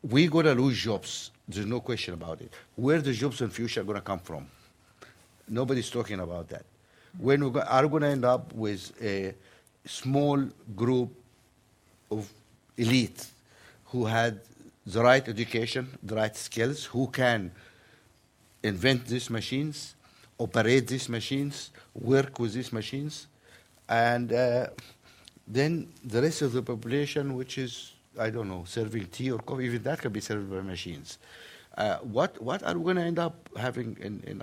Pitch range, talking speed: 110-135 Hz, 160 wpm